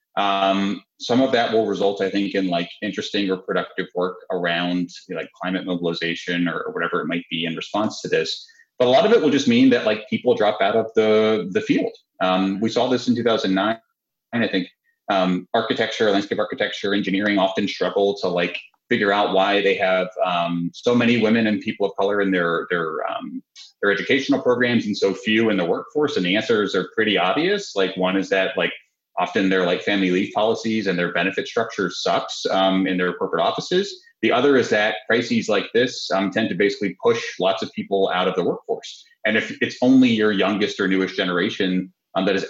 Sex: male